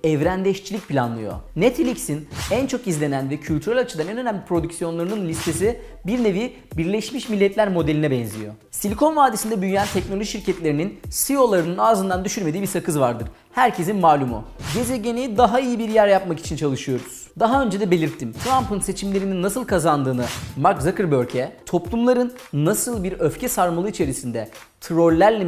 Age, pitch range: 40-59, 155-225 Hz